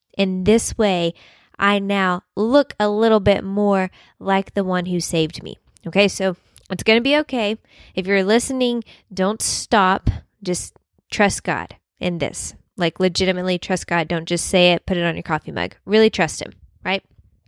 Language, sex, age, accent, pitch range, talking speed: English, female, 10-29, American, 185-220 Hz, 175 wpm